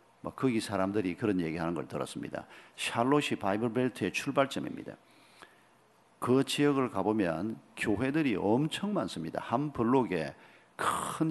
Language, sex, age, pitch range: Korean, male, 50-69, 105-140 Hz